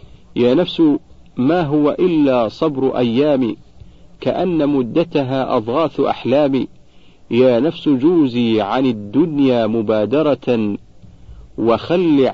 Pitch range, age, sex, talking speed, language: 110-150 Hz, 50-69, male, 90 wpm, Arabic